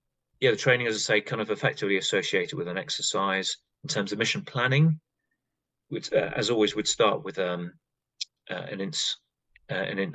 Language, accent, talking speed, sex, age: English, British, 175 wpm, male, 30-49